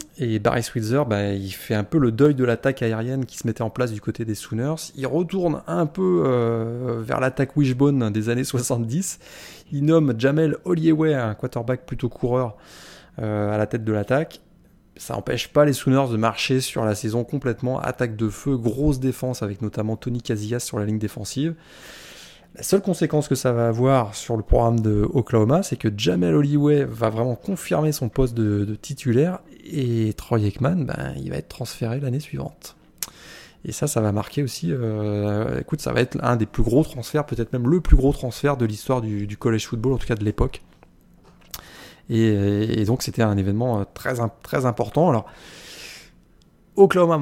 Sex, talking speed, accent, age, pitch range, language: male, 190 wpm, French, 20-39, 110-145 Hz, French